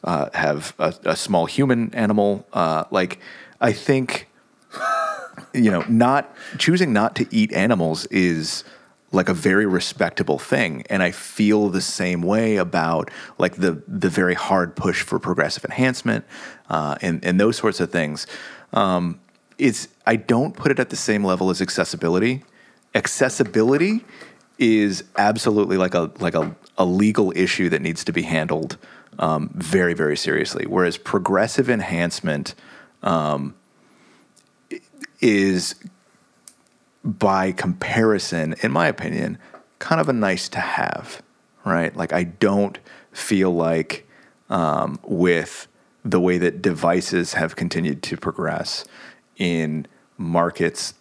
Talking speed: 135 wpm